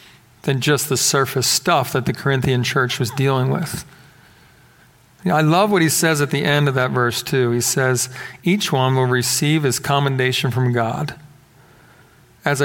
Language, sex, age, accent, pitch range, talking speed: English, male, 40-59, American, 135-195 Hz, 165 wpm